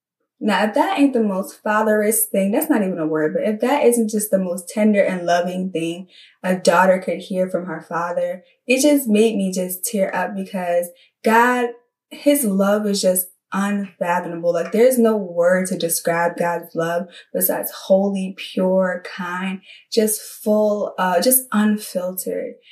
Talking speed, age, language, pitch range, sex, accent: 165 wpm, 20-39, English, 190-230 Hz, female, American